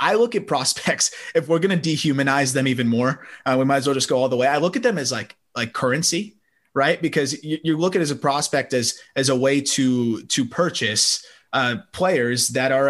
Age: 20-39